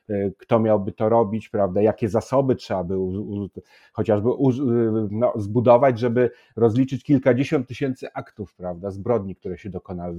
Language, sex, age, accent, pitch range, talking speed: Polish, male, 40-59, native, 100-125 Hz, 145 wpm